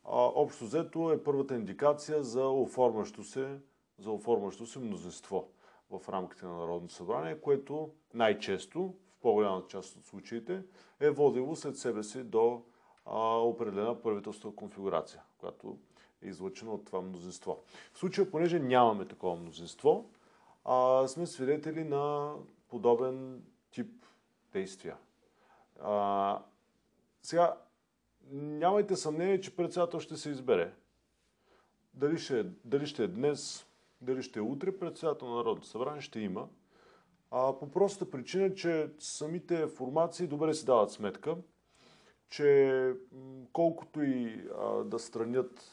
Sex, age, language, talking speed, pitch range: male, 40-59, Bulgarian, 115 wpm, 115-160 Hz